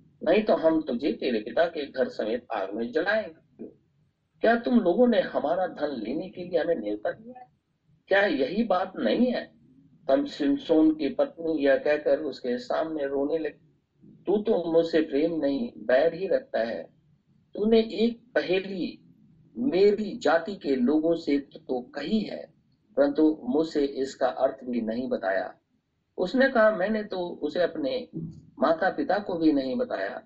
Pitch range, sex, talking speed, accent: 155-245 Hz, male, 85 wpm, native